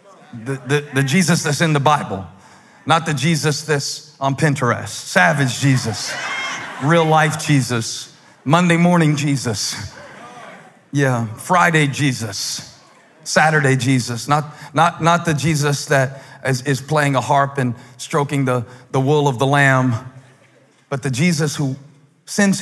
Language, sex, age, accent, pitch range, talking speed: English, male, 40-59, American, 120-150 Hz, 135 wpm